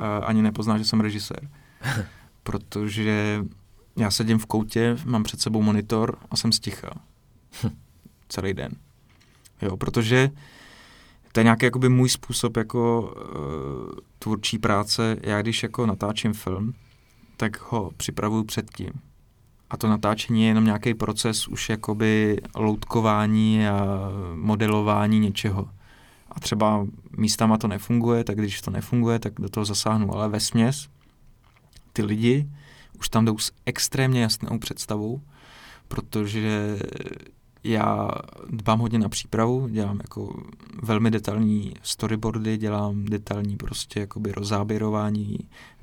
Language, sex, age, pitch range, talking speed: Czech, male, 30-49, 105-115 Hz, 115 wpm